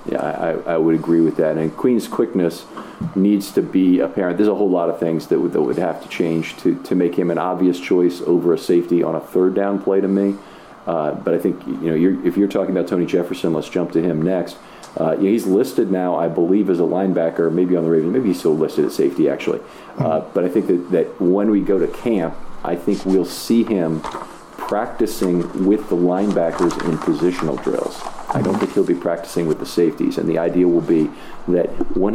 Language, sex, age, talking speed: English, male, 40-59, 230 wpm